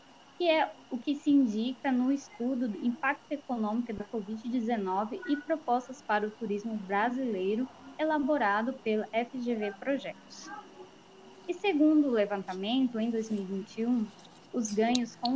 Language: Portuguese